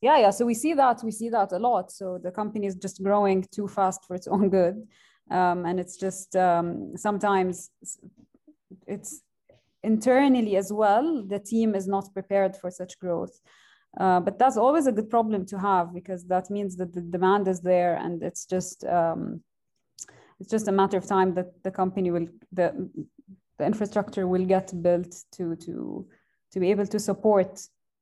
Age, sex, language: 20-39, female, English